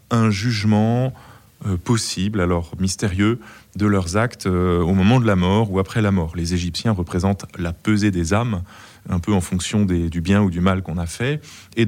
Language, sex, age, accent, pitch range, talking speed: French, male, 20-39, French, 95-115 Hz, 185 wpm